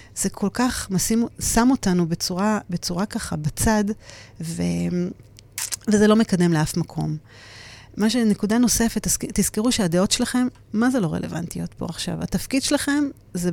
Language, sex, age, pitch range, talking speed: Hebrew, female, 40-59, 170-225 Hz, 135 wpm